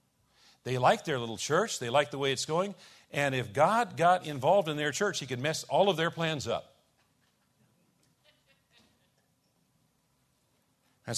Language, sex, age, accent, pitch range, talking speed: English, male, 50-69, American, 130-160 Hz, 150 wpm